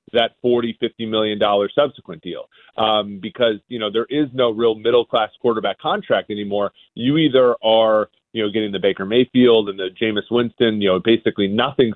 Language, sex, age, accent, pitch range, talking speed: English, male, 30-49, American, 110-125 Hz, 185 wpm